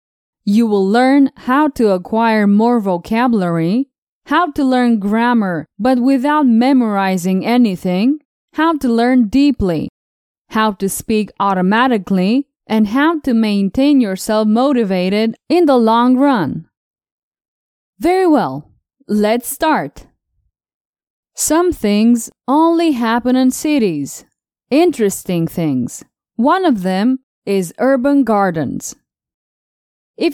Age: 20-39